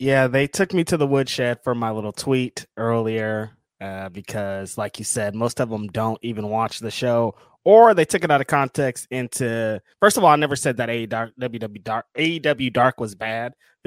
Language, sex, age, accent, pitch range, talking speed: English, male, 20-39, American, 110-135 Hz, 200 wpm